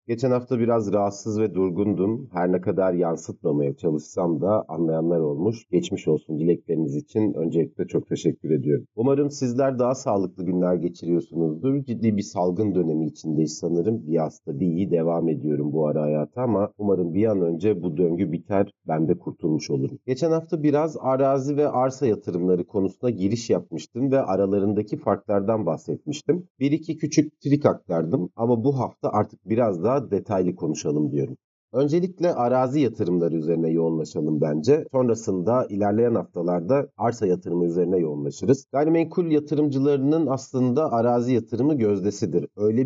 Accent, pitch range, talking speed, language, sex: native, 90-130 Hz, 145 wpm, Turkish, male